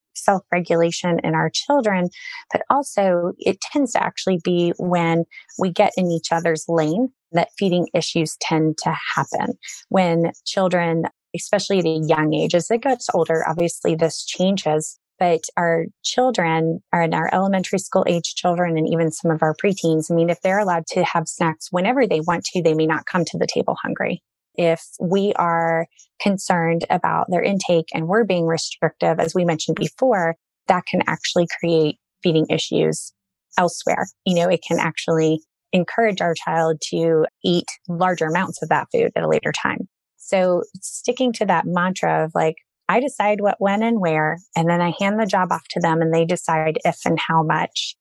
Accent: American